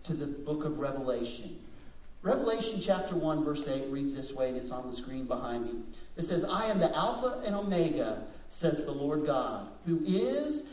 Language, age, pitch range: English, 50-69, 155-250 Hz